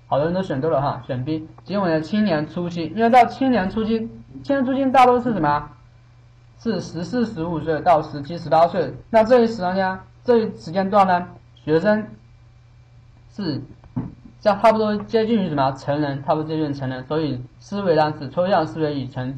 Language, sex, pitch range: Chinese, male, 130-180 Hz